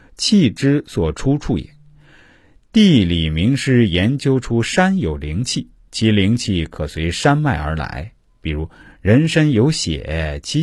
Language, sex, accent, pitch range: Chinese, male, native, 85-135 Hz